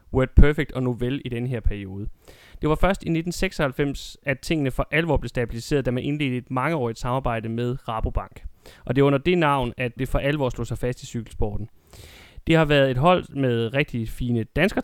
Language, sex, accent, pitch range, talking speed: Danish, male, native, 120-145 Hz, 205 wpm